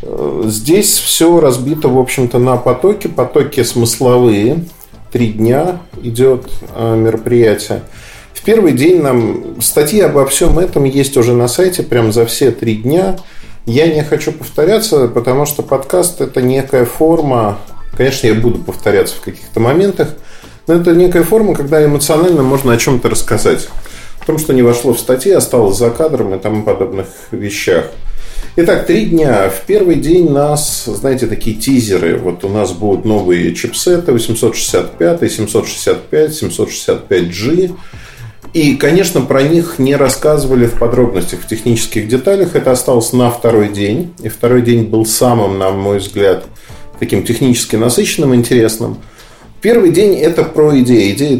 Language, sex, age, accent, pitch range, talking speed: Russian, male, 40-59, native, 115-155 Hz, 145 wpm